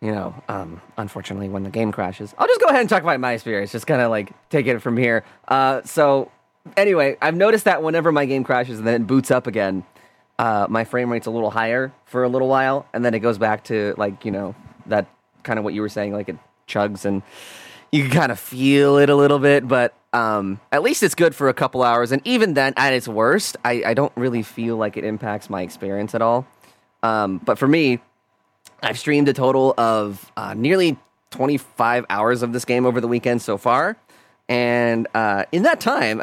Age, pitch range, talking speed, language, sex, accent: 30-49, 110-150 Hz, 225 wpm, English, male, American